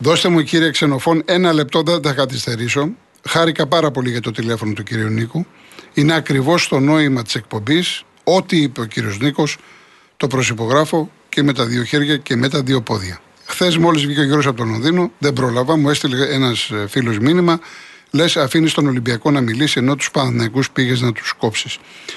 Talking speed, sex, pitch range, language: 185 wpm, male, 135-170 Hz, Greek